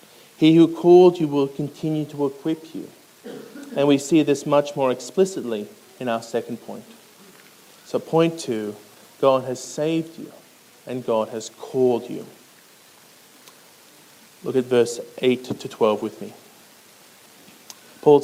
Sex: male